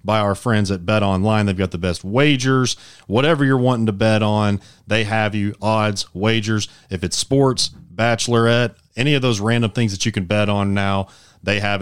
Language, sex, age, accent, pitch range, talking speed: English, male, 40-59, American, 95-115 Hz, 200 wpm